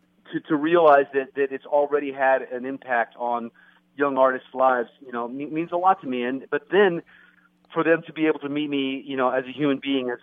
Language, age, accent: English, 40-59, American